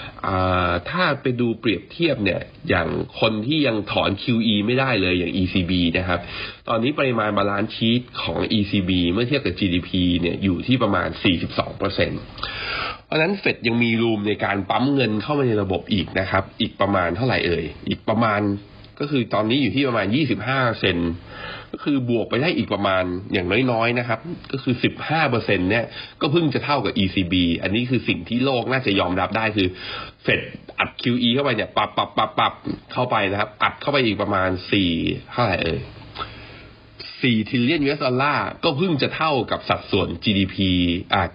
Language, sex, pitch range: Thai, male, 95-125 Hz